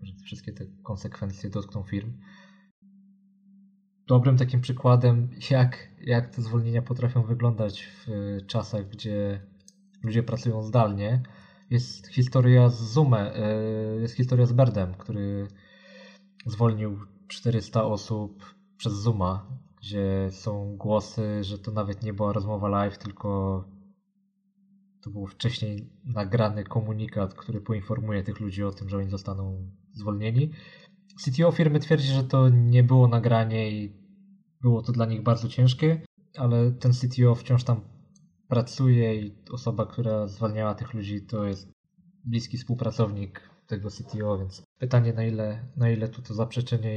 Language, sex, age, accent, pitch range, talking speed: Polish, male, 20-39, native, 105-135 Hz, 130 wpm